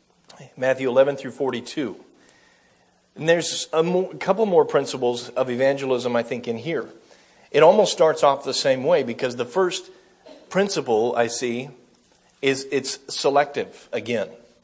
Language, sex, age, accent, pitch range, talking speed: English, male, 40-59, American, 125-170 Hz, 135 wpm